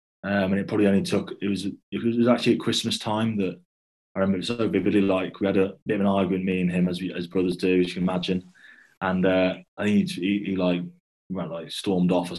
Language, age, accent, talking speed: English, 20-39, British, 260 wpm